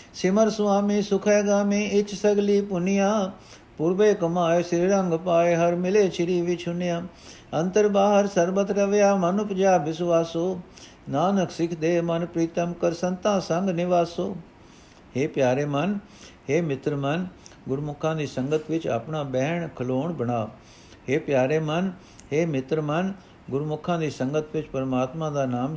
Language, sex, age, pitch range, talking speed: Punjabi, male, 60-79, 135-175 Hz, 140 wpm